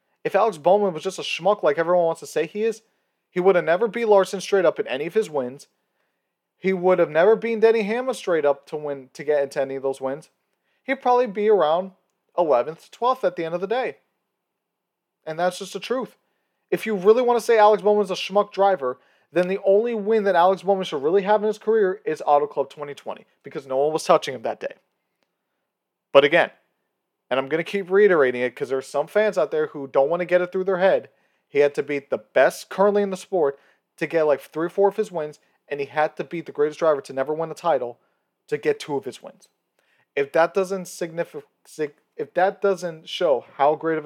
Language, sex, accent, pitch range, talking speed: English, male, American, 150-200 Hz, 235 wpm